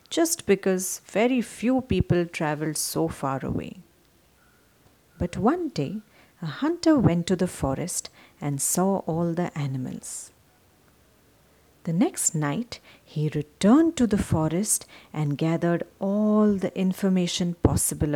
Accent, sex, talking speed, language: Indian, female, 120 wpm, English